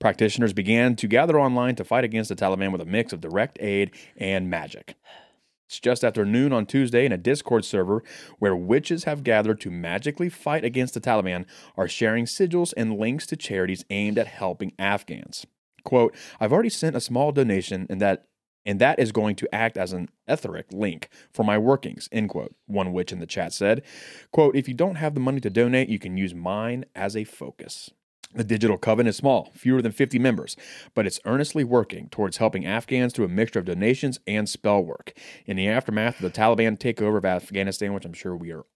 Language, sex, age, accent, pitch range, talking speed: English, male, 30-49, American, 95-125 Hz, 205 wpm